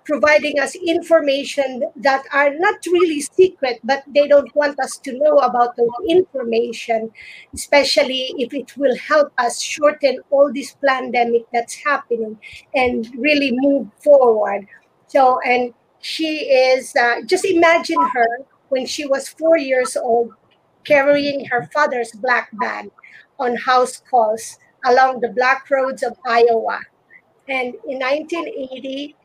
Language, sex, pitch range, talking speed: English, female, 240-285 Hz, 135 wpm